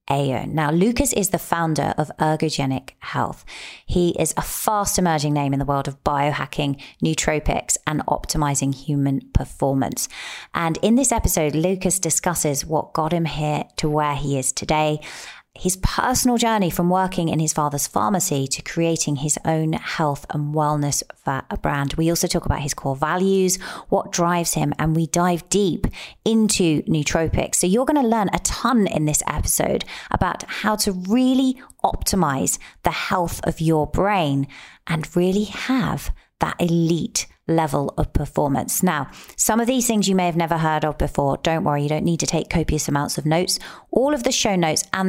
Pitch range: 150-185 Hz